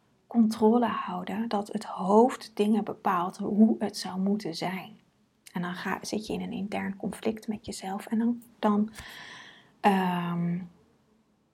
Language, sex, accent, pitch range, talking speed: Dutch, female, Dutch, 190-225 Hz, 140 wpm